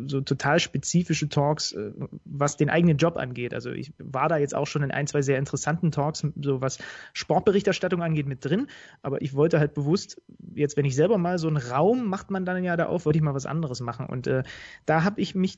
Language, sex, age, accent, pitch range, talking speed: German, male, 30-49, German, 140-170 Hz, 225 wpm